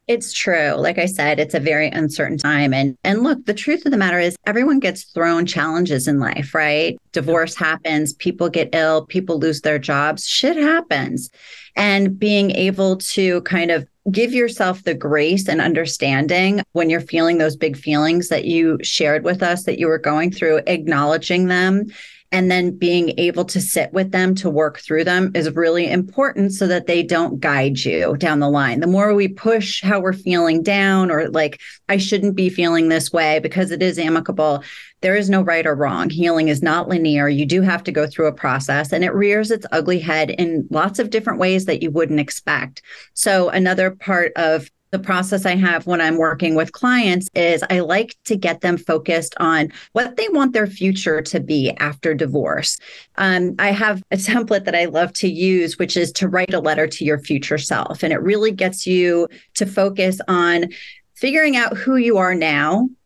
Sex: female